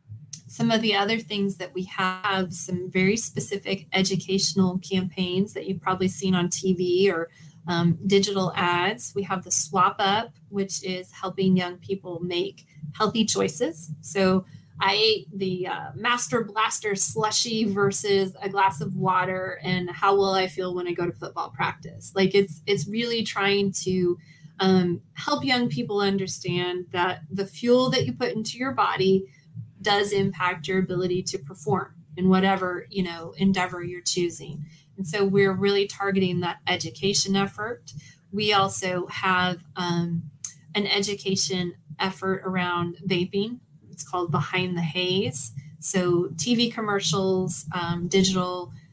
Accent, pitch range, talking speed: American, 175-195 Hz, 145 wpm